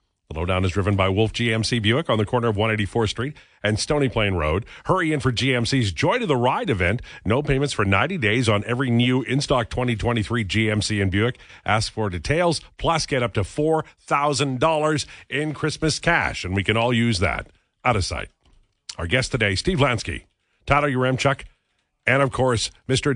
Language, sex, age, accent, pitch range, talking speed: English, male, 50-69, American, 100-145 Hz, 185 wpm